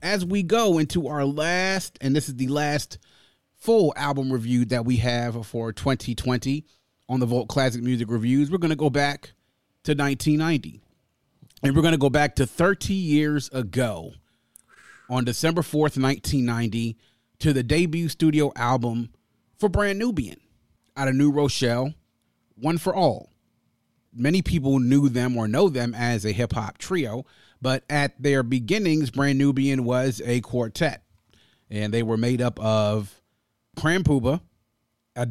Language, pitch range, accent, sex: English, 120-145 Hz, American, male